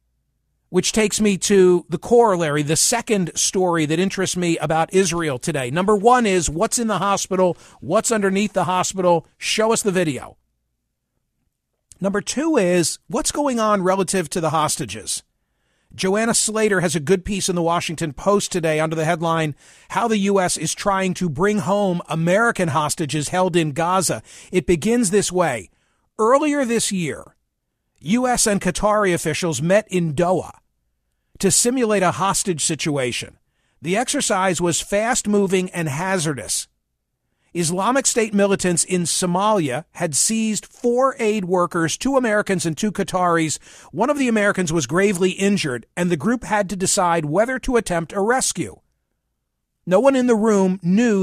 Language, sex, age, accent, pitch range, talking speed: English, male, 50-69, American, 165-210 Hz, 155 wpm